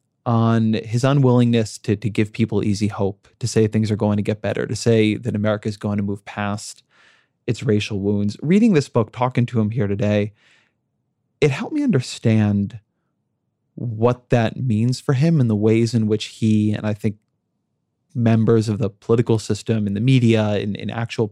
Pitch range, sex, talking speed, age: 105-125 Hz, male, 185 wpm, 20-39